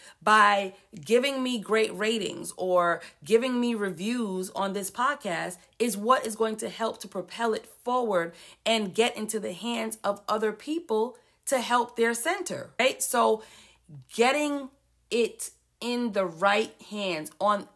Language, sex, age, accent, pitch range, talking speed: English, female, 30-49, American, 190-250 Hz, 145 wpm